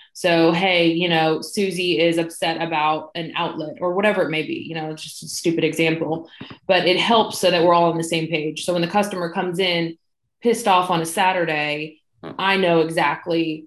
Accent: American